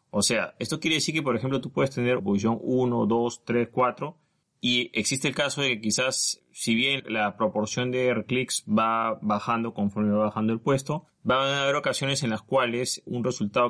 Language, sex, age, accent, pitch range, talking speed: Spanish, male, 30-49, Argentinian, 105-130 Hz, 195 wpm